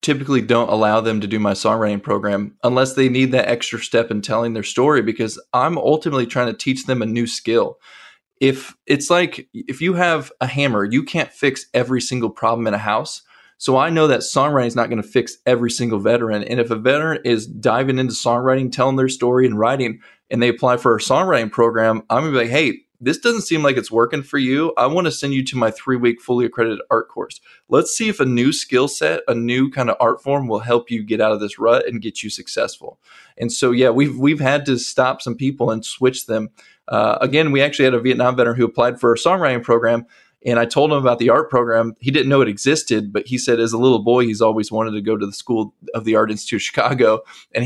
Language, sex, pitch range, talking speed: English, male, 115-135 Hz, 240 wpm